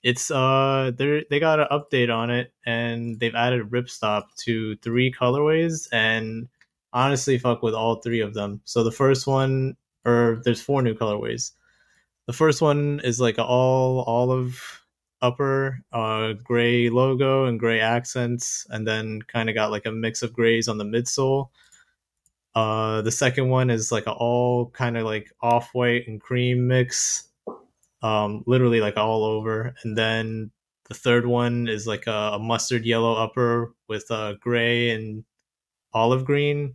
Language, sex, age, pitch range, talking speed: Finnish, male, 20-39, 115-130 Hz, 160 wpm